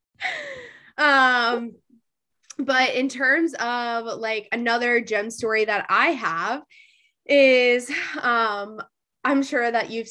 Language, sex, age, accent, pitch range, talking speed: English, female, 10-29, American, 210-265 Hz, 105 wpm